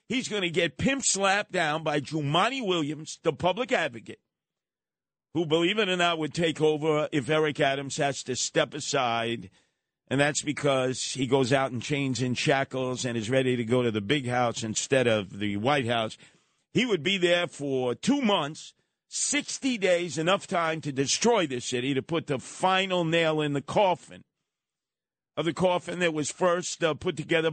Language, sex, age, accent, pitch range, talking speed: English, male, 50-69, American, 135-180 Hz, 185 wpm